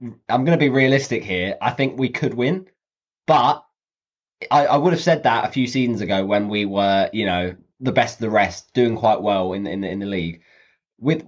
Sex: male